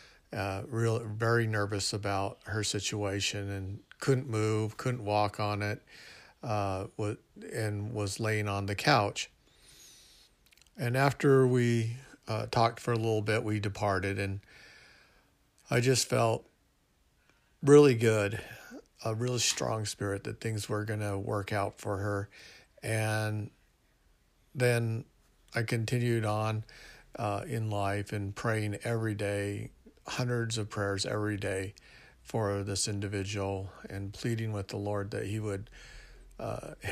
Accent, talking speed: American, 130 wpm